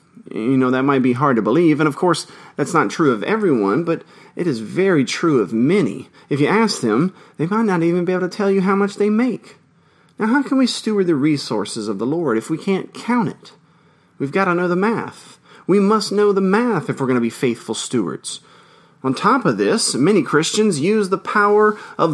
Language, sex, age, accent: English, male, 30-49, American